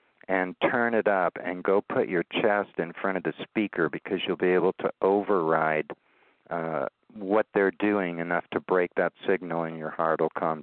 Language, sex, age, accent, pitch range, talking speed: English, male, 50-69, American, 85-105 Hz, 190 wpm